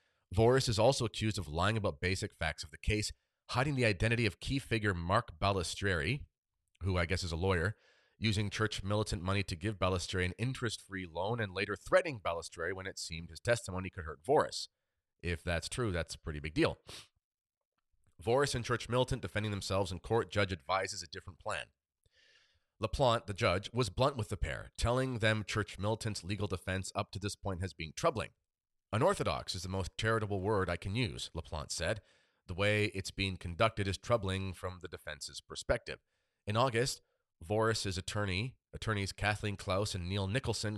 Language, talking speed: English, 180 wpm